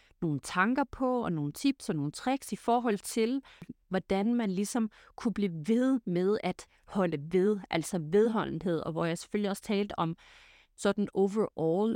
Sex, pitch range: female, 185-235 Hz